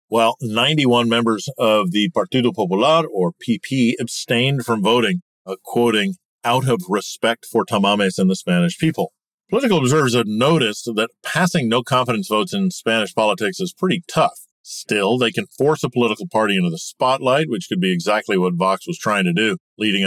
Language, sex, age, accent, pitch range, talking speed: English, male, 50-69, American, 105-170 Hz, 175 wpm